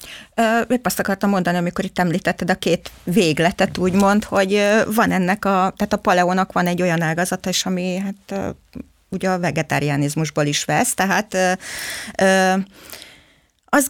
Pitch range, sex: 175-205 Hz, female